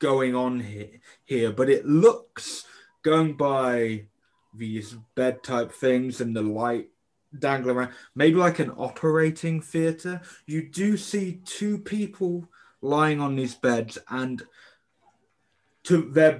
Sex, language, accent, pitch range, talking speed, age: male, English, British, 115-155 Hz, 130 wpm, 20-39